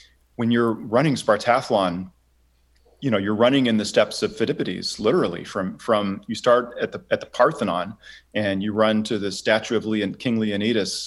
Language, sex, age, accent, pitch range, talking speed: English, male, 40-59, American, 95-115 Hz, 180 wpm